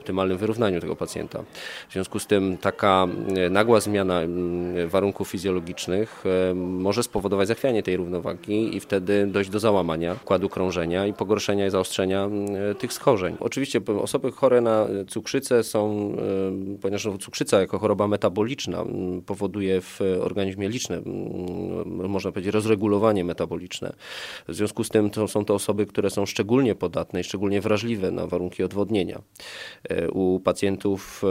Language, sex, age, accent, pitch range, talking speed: Polish, male, 20-39, native, 90-105 Hz, 135 wpm